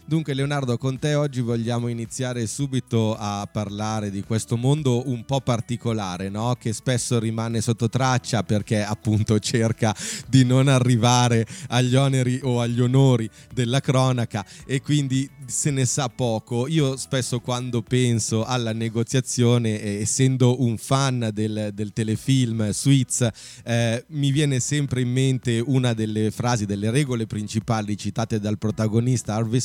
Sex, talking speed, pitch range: male, 140 wpm, 110-130 Hz